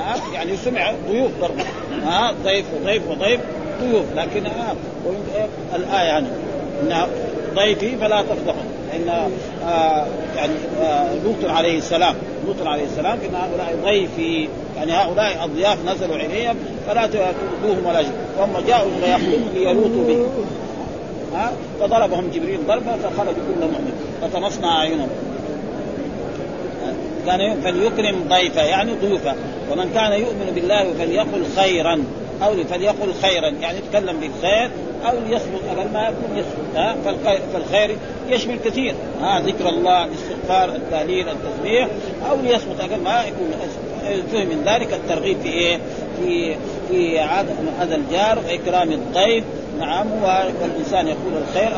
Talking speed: 125 wpm